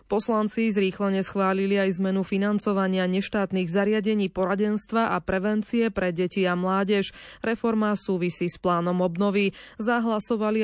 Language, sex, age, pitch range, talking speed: Slovak, female, 20-39, 185-220 Hz, 120 wpm